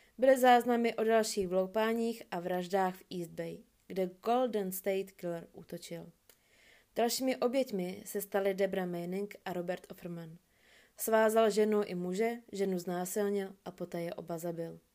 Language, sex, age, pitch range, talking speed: Czech, female, 20-39, 180-215 Hz, 140 wpm